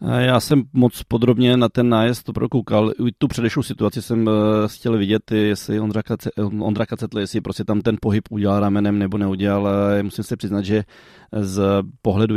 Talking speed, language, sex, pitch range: 160 wpm, Czech, male, 95-110 Hz